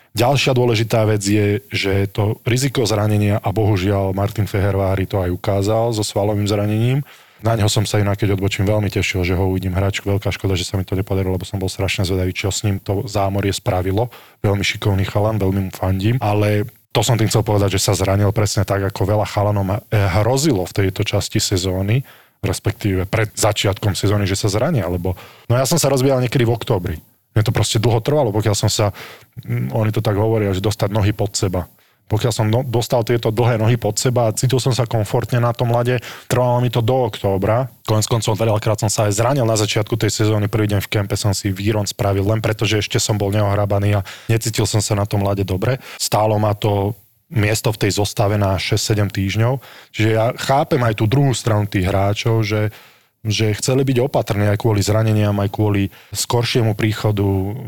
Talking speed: 205 wpm